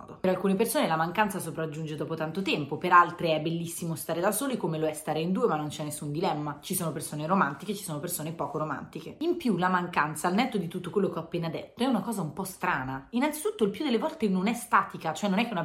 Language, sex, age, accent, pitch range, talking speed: Italian, female, 30-49, native, 155-195 Hz, 260 wpm